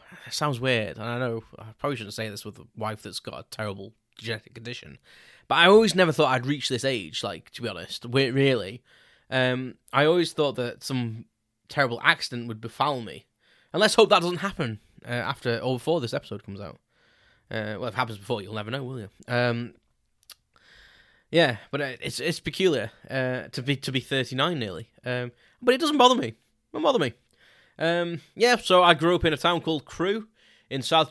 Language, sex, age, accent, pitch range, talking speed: English, male, 10-29, British, 115-150 Hz, 205 wpm